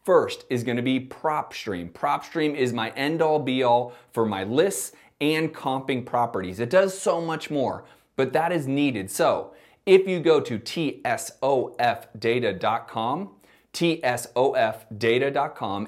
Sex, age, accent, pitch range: male, 30-49, American, 120-170 Hz